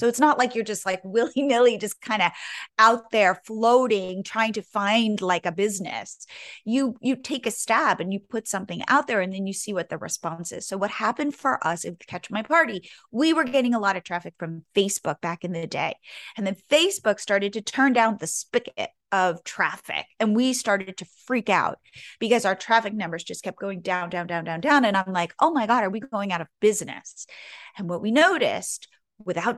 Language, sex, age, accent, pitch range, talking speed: English, female, 30-49, American, 195-245 Hz, 215 wpm